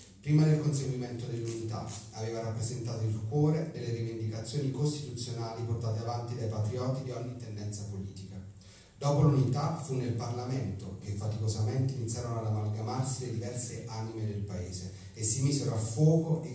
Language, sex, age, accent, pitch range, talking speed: Italian, male, 30-49, native, 105-130 Hz, 145 wpm